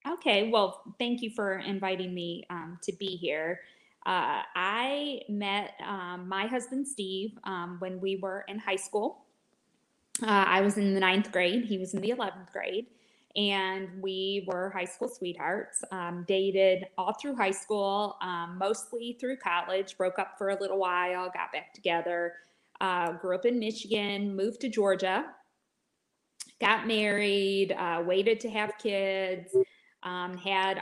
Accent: American